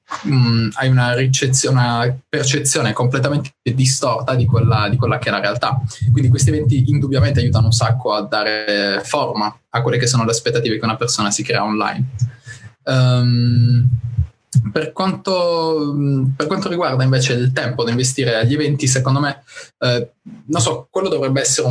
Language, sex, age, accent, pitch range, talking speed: Italian, male, 20-39, native, 120-135 Hz, 165 wpm